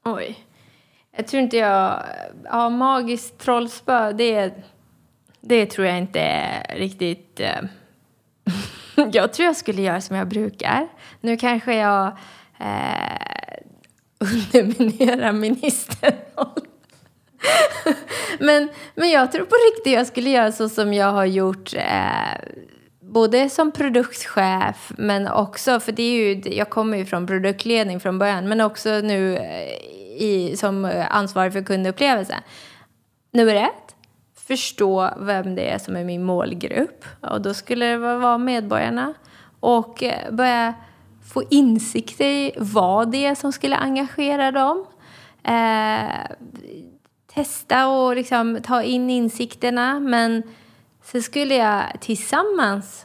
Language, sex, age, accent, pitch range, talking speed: Swedish, female, 20-39, native, 205-265 Hz, 125 wpm